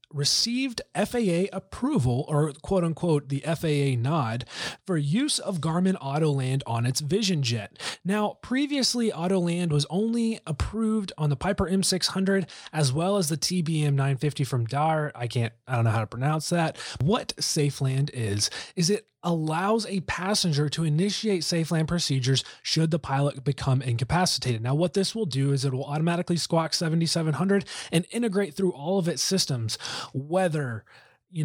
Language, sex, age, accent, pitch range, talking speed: English, male, 30-49, American, 140-185 Hz, 155 wpm